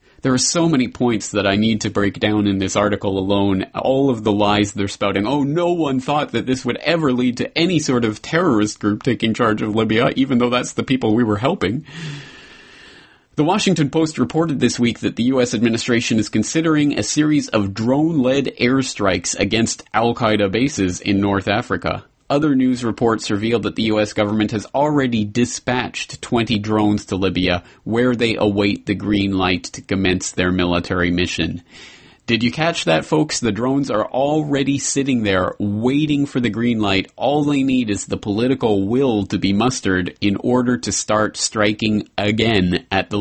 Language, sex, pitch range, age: English, male, 100-125 Hz, 30-49